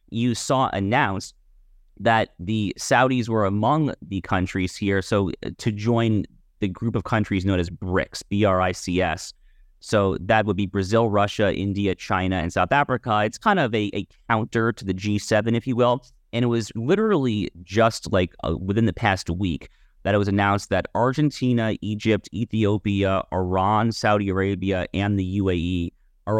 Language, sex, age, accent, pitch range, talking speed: English, male, 30-49, American, 95-115 Hz, 160 wpm